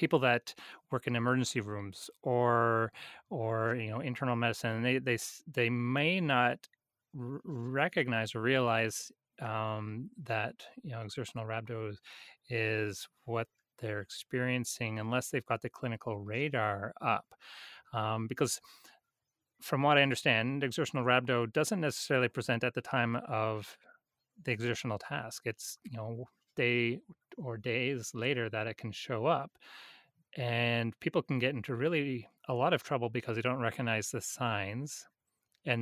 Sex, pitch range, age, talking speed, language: male, 110-130 Hz, 30-49, 140 wpm, English